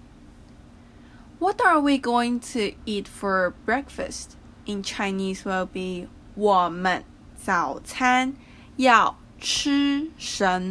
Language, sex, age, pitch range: Chinese, female, 20-39, 195-265 Hz